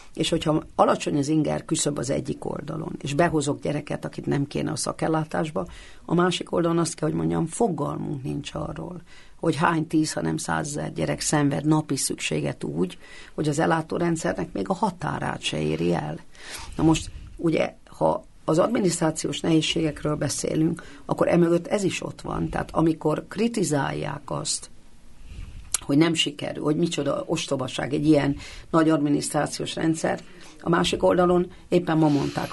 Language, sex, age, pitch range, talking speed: Hungarian, female, 50-69, 145-165 Hz, 150 wpm